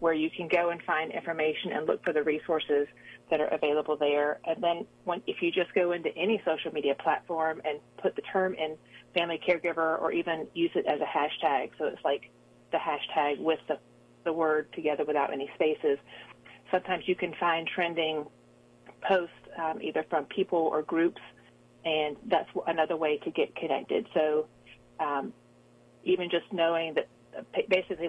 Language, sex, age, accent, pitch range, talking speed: English, female, 40-59, American, 150-170 Hz, 170 wpm